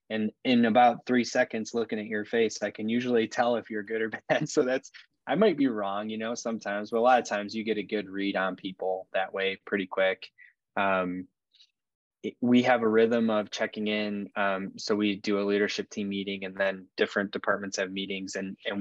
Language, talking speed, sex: English, 215 wpm, male